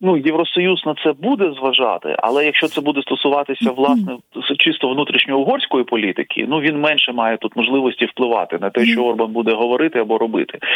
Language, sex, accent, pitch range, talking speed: Ukrainian, male, native, 125-150 Hz, 165 wpm